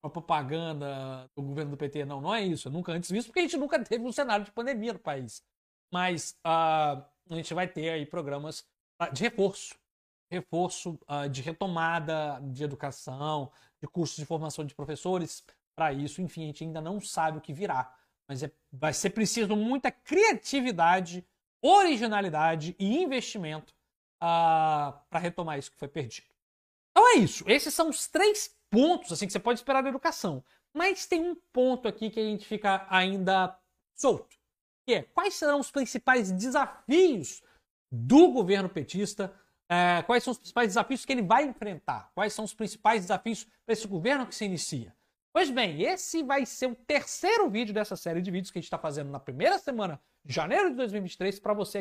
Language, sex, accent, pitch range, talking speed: Portuguese, male, Brazilian, 160-235 Hz, 180 wpm